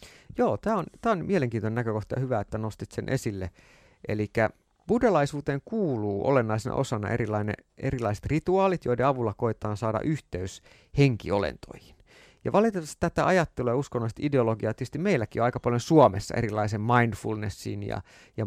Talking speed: 135 wpm